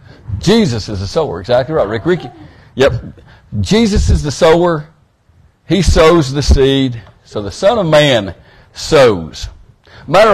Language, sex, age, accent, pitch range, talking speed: English, male, 60-79, American, 105-155 Hz, 140 wpm